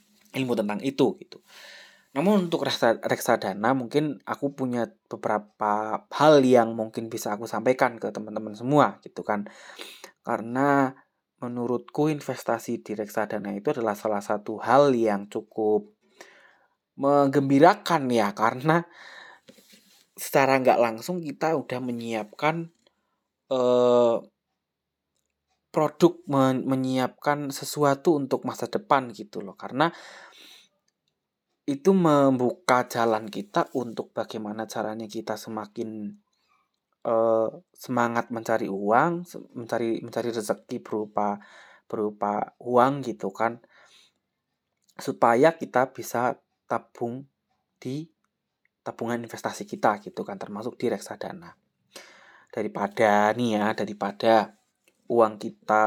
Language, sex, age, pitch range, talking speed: Indonesian, male, 20-39, 110-140 Hz, 100 wpm